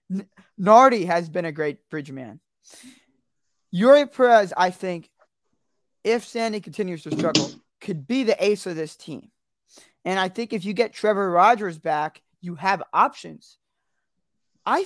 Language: English